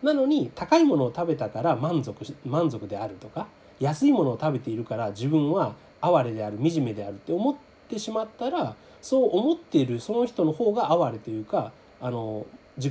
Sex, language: male, Japanese